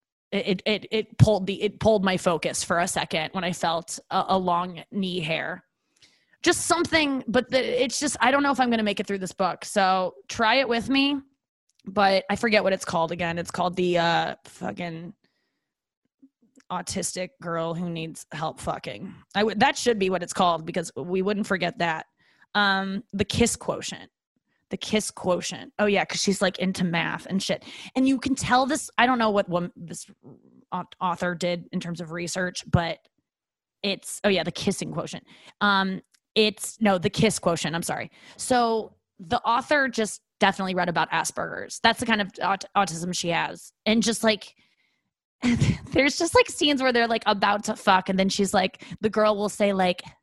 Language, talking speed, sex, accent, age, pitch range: English, 190 wpm, female, American, 20-39, 180-230 Hz